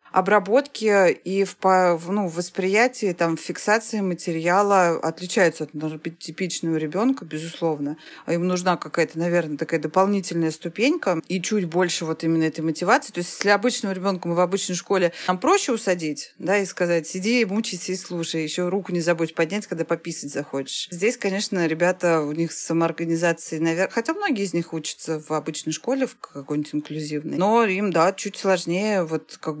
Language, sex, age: Russian, female, 30-49